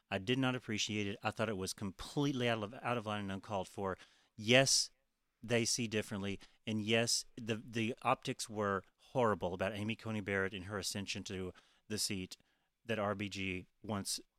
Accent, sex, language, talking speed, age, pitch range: American, male, English, 165 wpm, 40-59, 100-125 Hz